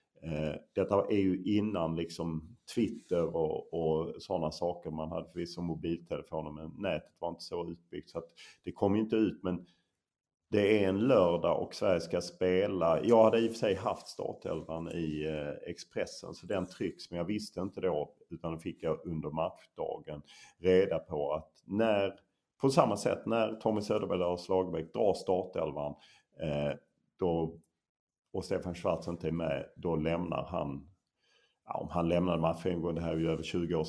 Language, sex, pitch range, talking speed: English, male, 80-90 Hz, 165 wpm